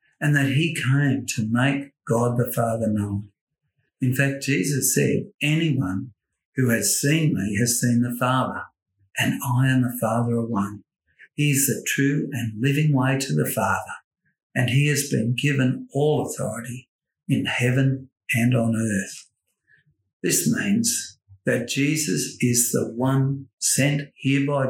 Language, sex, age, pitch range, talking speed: English, male, 60-79, 120-140 Hz, 150 wpm